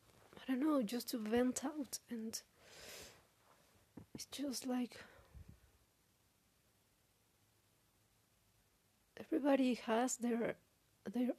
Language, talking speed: English, 80 wpm